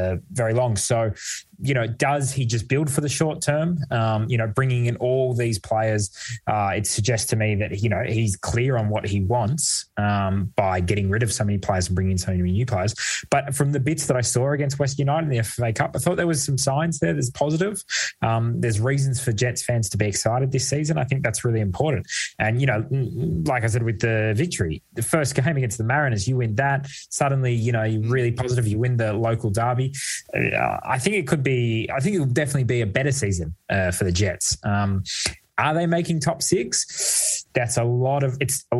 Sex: male